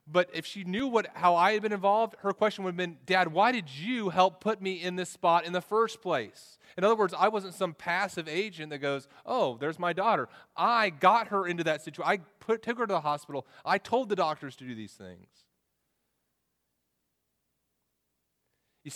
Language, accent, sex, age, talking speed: English, American, male, 30-49, 205 wpm